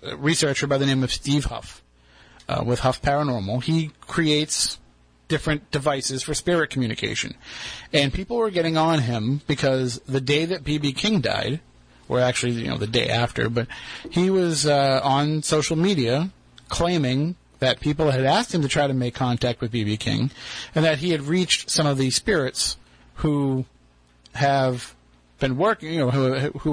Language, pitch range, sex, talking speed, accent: English, 120-155 Hz, male, 170 wpm, American